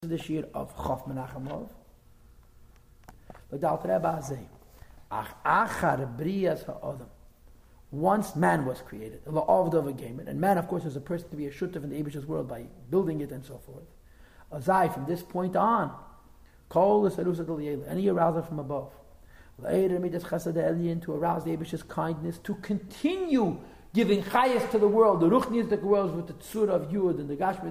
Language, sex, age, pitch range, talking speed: English, male, 50-69, 145-195 Hz, 140 wpm